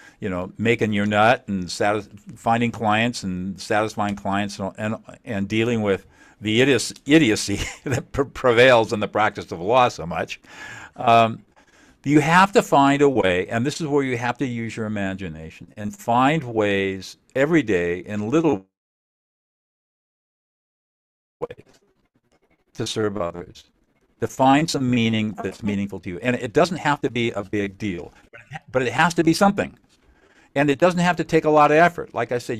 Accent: American